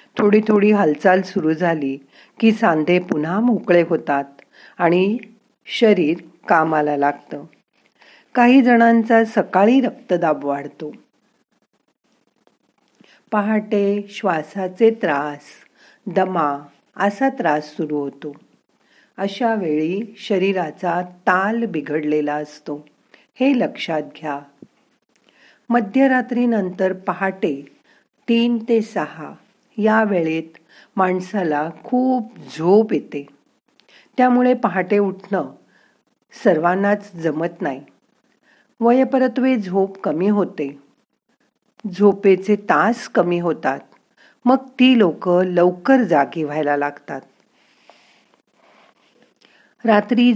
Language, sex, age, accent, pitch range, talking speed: Marathi, female, 50-69, native, 155-225 Hz, 80 wpm